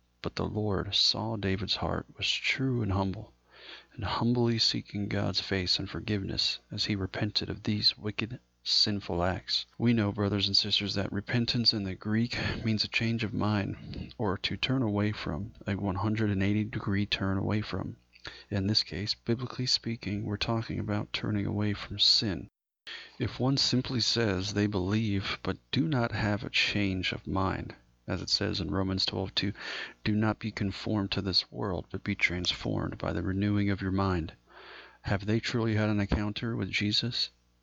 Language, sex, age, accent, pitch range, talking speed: English, male, 40-59, American, 95-110 Hz, 170 wpm